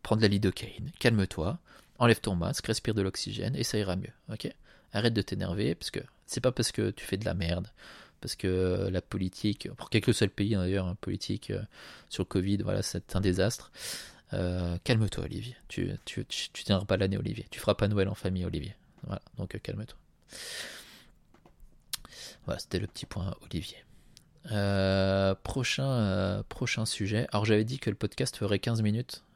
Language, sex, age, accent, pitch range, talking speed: French, male, 20-39, French, 95-115 Hz, 185 wpm